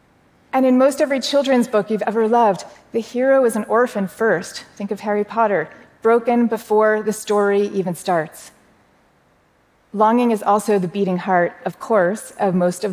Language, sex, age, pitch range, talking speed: English, female, 30-49, 185-225 Hz, 165 wpm